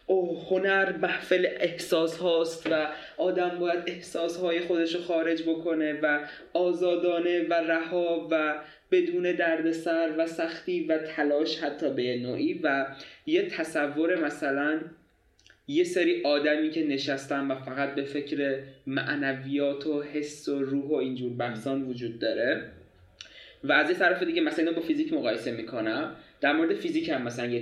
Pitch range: 135-170 Hz